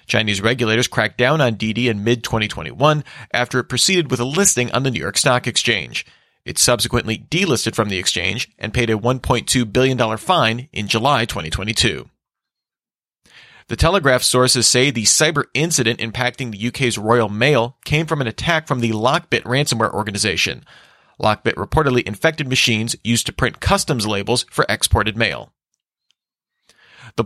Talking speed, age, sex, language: 150 wpm, 40-59, male, English